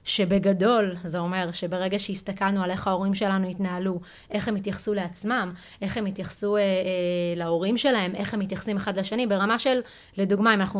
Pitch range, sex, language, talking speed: 185-215 Hz, female, Hebrew, 170 wpm